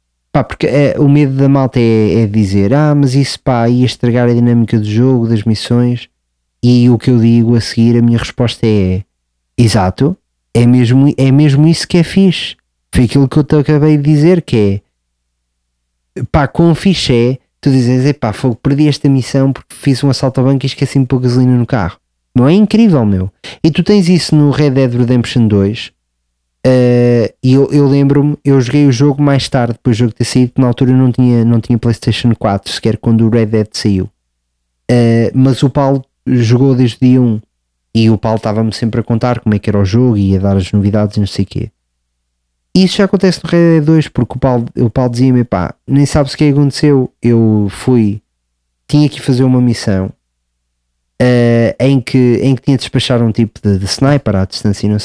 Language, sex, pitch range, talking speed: Portuguese, male, 105-135 Hz, 215 wpm